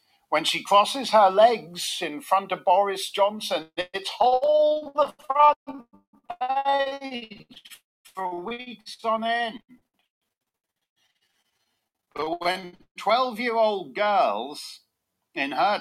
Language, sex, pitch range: English, male, 165-240 Hz